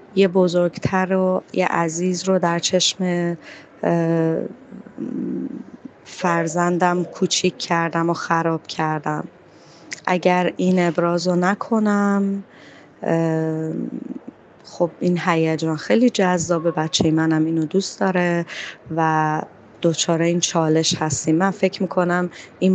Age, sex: 20-39, female